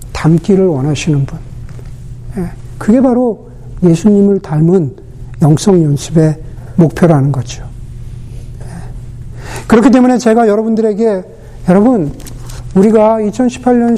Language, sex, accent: Korean, male, native